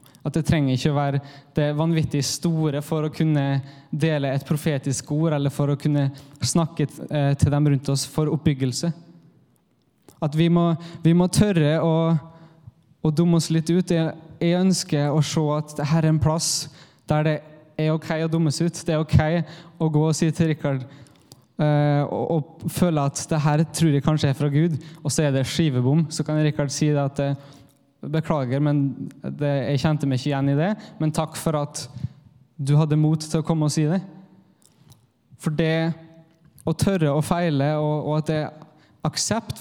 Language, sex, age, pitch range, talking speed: English, male, 20-39, 145-165 Hz, 195 wpm